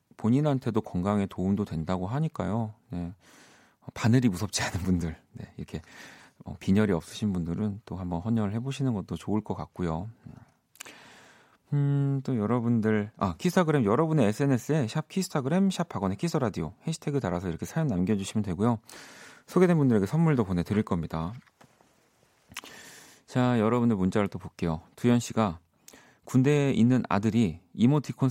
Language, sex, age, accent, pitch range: Korean, male, 40-59, native, 90-125 Hz